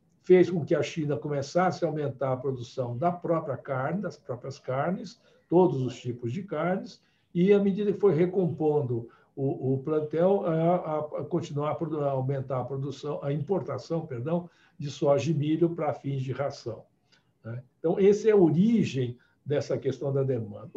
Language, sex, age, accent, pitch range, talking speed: Portuguese, male, 60-79, Brazilian, 135-175 Hz, 160 wpm